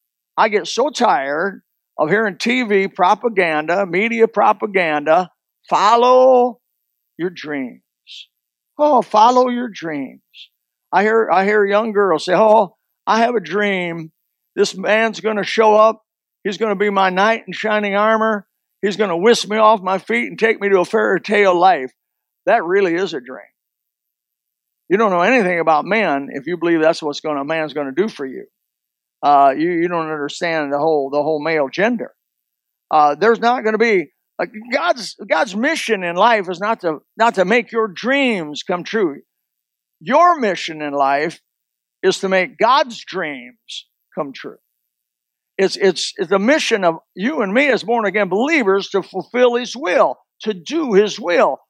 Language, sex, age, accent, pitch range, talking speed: English, male, 50-69, American, 165-225 Hz, 170 wpm